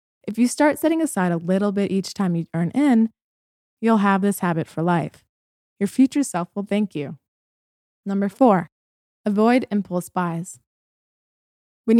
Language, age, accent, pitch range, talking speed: English, 20-39, American, 180-235 Hz, 155 wpm